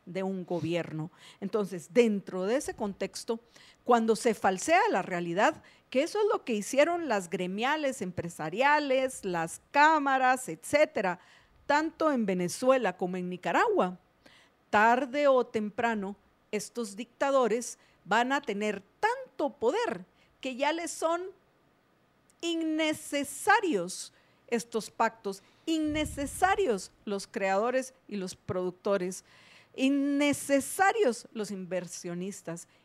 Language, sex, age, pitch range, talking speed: Spanish, female, 50-69, 200-300 Hz, 105 wpm